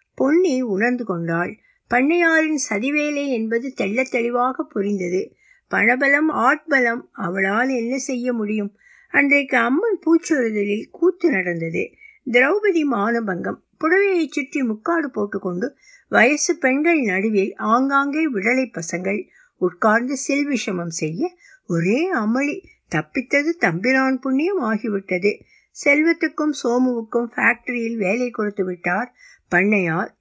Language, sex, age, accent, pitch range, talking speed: Tamil, female, 60-79, native, 195-275 Hz, 65 wpm